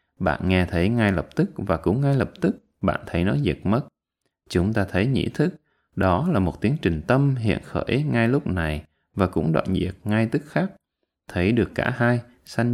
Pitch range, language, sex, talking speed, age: 85-120 Hz, Vietnamese, male, 205 wpm, 20-39